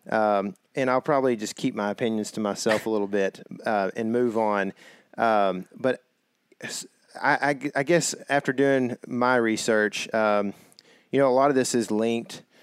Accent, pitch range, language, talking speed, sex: American, 100-120 Hz, English, 170 wpm, male